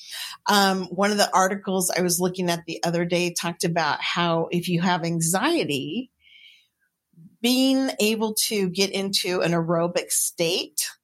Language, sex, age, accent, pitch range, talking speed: English, female, 40-59, American, 170-210 Hz, 145 wpm